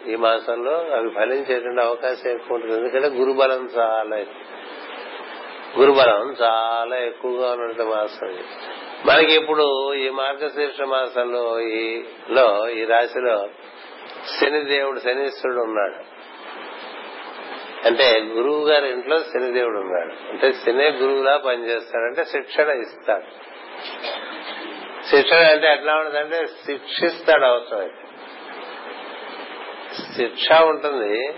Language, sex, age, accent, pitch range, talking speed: Telugu, male, 50-69, native, 115-150 Hz, 95 wpm